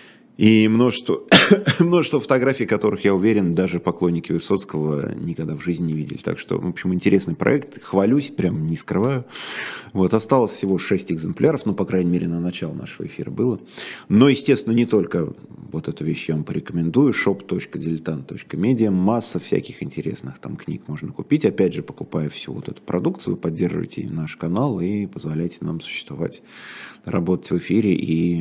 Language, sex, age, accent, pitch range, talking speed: Russian, male, 20-39, native, 85-110 Hz, 160 wpm